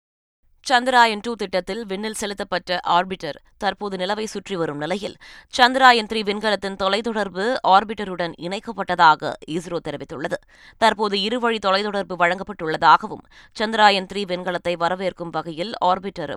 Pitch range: 165-210 Hz